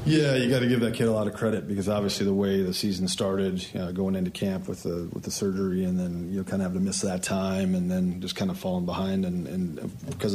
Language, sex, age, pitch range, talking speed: English, male, 40-59, 95-105 Hz, 280 wpm